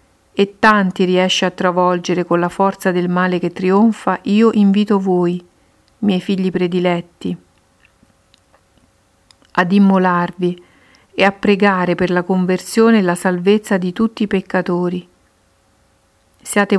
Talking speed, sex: 120 wpm, female